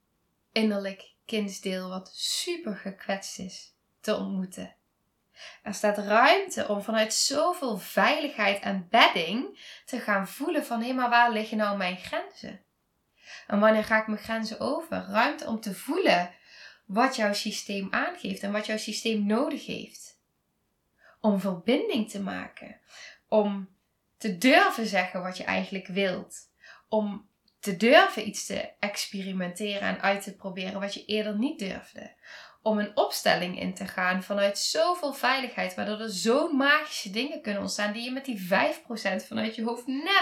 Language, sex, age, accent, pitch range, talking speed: Dutch, female, 10-29, Dutch, 200-255 Hz, 150 wpm